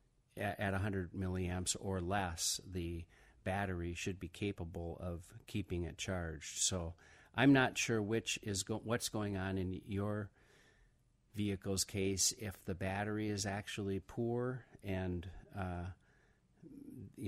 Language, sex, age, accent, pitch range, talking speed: English, male, 50-69, American, 85-105 Hz, 125 wpm